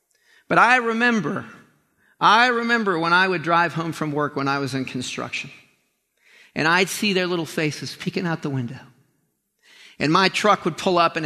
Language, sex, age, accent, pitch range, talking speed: English, male, 40-59, American, 170-255 Hz, 180 wpm